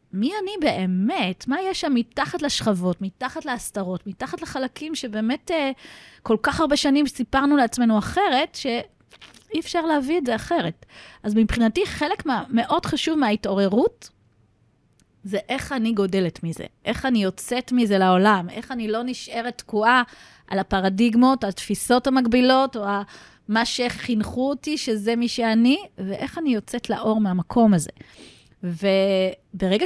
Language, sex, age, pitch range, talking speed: Hebrew, female, 30-49, 215-280 Hz, 135 wpm